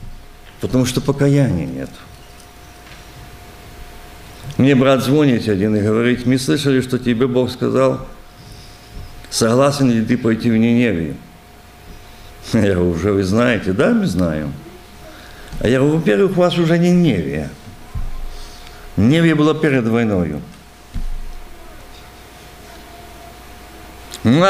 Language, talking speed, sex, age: Russian, 110 wpm, male, 50-69